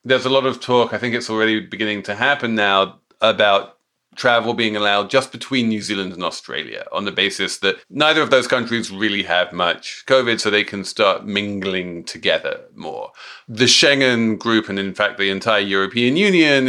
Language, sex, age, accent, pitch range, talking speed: English, male, 40-59, British, 105-135 Hz, 185 wpm